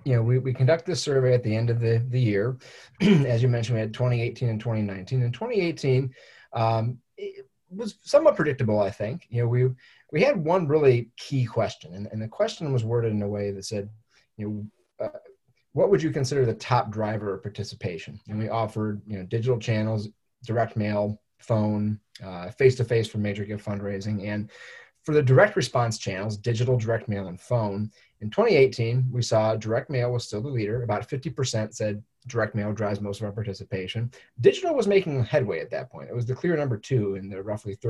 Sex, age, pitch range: male, 30-49, 105-130 Hz